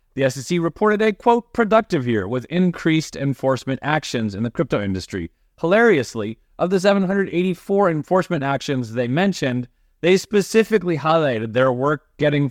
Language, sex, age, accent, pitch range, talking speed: English, male, 30-49, American, 115-165 Hz, 140 wpm